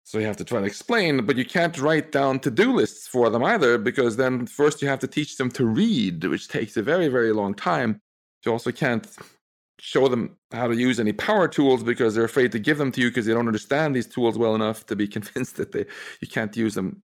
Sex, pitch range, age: male, 110-145 Hz, 40-59